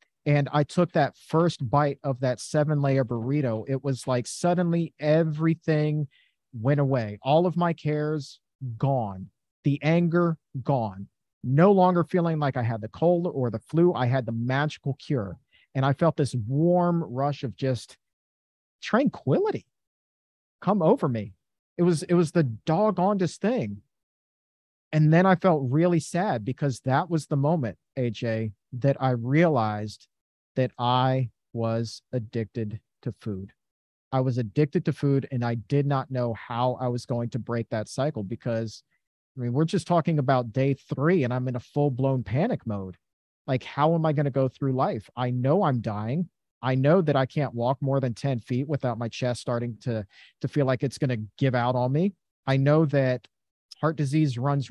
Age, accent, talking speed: 40-59, American, 175 wpm